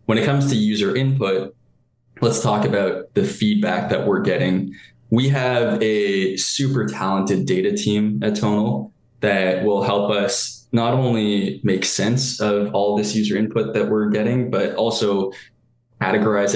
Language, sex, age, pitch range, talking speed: English, male, 10-29, 100-115 Hz, 150 wpm